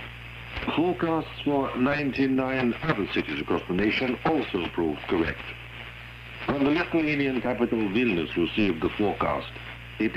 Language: Italian